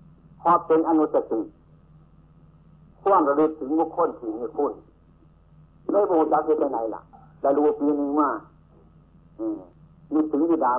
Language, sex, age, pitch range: Thai, male, 60-79, 115-155 Hz